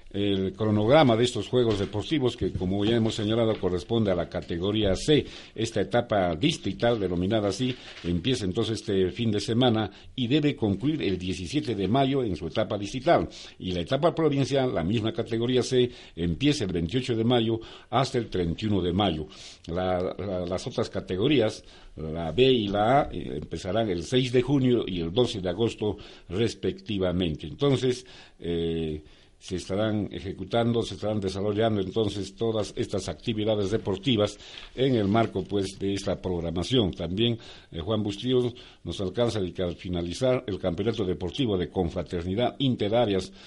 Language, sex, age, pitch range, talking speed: Spanish, male, 60-79, 90-120 Hz, 155 wpm